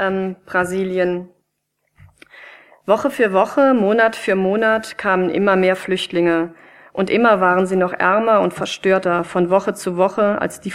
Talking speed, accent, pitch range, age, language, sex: 145 wpm, German, 180-215 Hz, 40-59, German, female